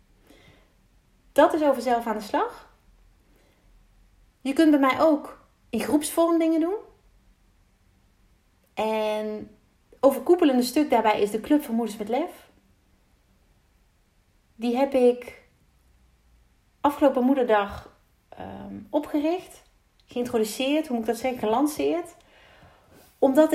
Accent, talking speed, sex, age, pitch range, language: Dutch, 105 wpm, female, 30-49, 210-285 Hz, Dutch